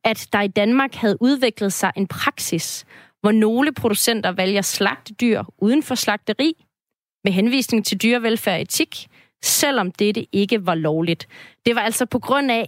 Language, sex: Danish, female